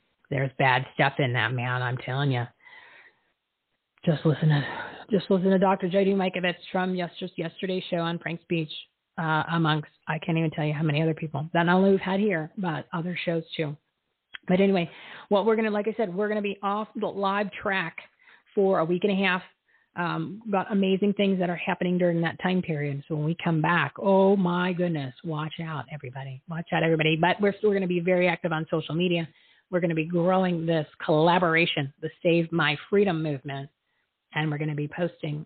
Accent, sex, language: American, female, English